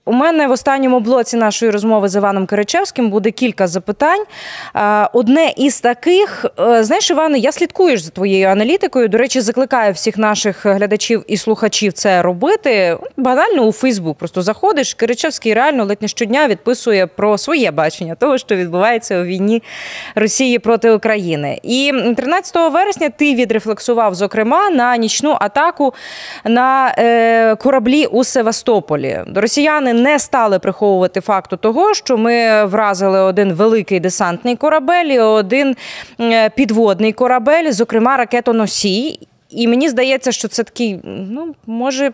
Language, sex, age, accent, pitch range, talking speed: Ukrainian, female, 20-39, native, 205-265 Hz, 135 wpm